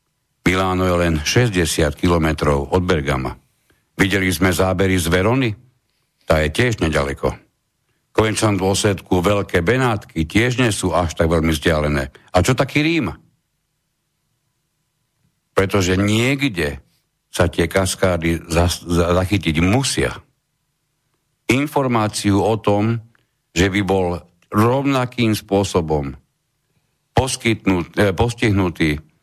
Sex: male